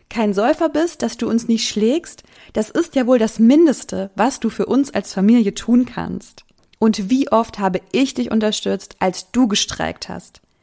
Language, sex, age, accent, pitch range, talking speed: German, female, 20-39, German, 185-225 Hz, 185 wpm